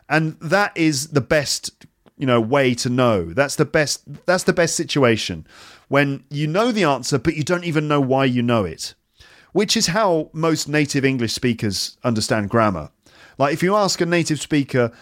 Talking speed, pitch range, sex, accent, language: 190 wpm, 120-160 Hz, male, British, English